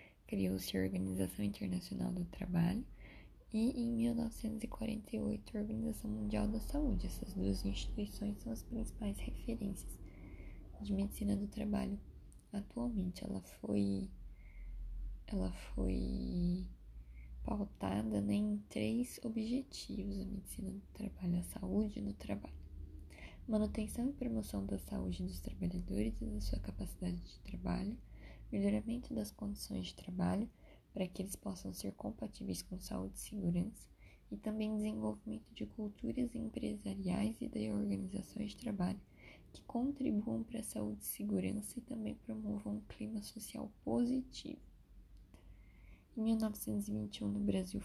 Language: Portuguese